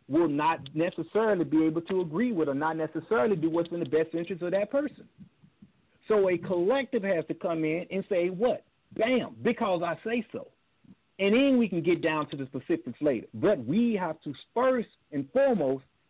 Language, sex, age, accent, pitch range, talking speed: English, male, 50-69, American, 150-225 Hz, 195 wpm